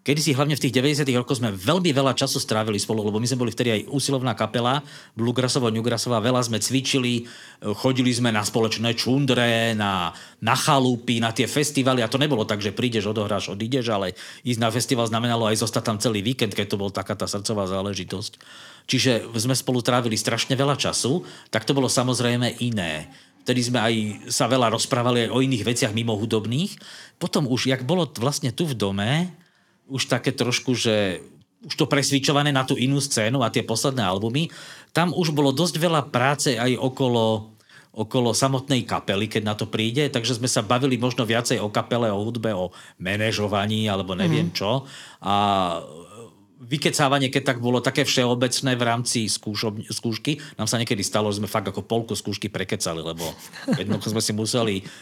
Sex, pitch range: male, 110-130 Hz